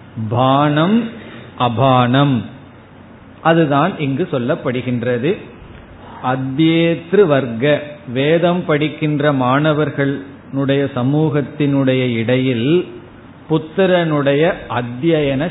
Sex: male